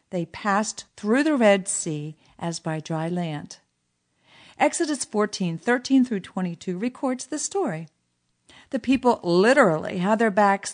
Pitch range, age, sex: 180-245 Hz, 50-69, female